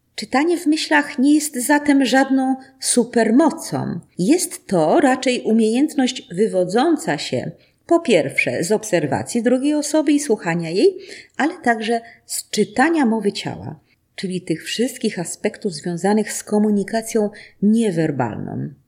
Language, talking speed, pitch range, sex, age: Polish, 120 wpm, 175-270 Hz, female, 40-59